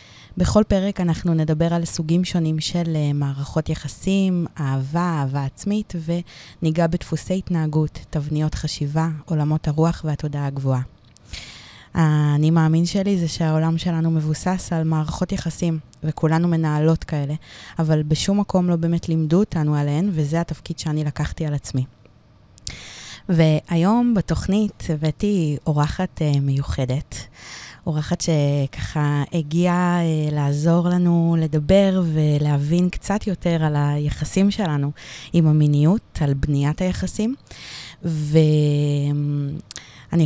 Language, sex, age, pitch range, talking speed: Hebrew, female, 20-39, 150-170 Hz, 115 wpm